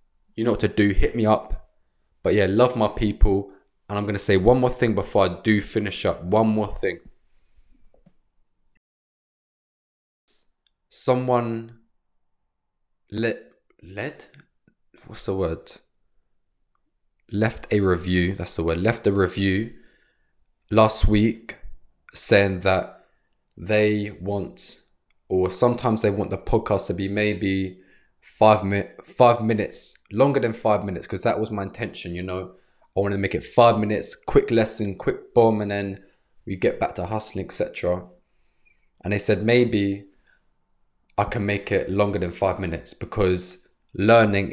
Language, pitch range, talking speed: English, 95-110 Hz, 140 wpm